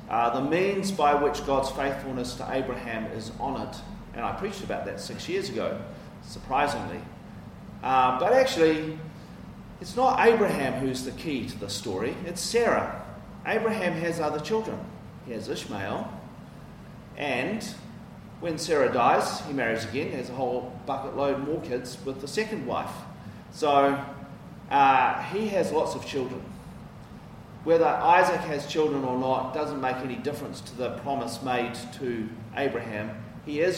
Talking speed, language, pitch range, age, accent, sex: 150 wpm, English, 120-160 Hz, 40-59, Australian, male